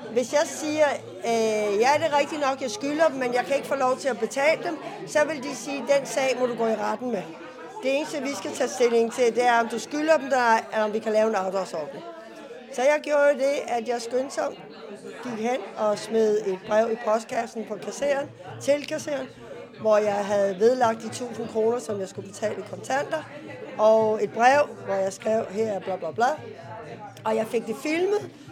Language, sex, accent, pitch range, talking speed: Danish, female, native, 220-275 Hz, 225 wpm